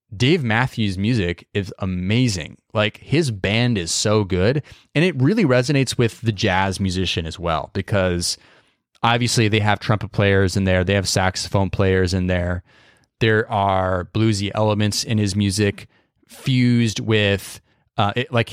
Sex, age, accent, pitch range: male, 20-39, American, 95-120 Hz